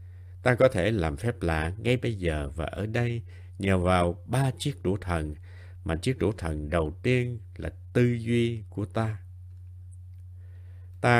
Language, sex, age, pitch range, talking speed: Vietnamese, male, 60-79, 90-115 Hz, 160 wpm